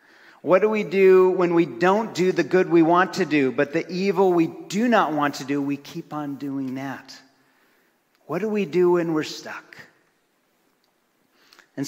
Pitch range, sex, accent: 135-175 Hz, male, American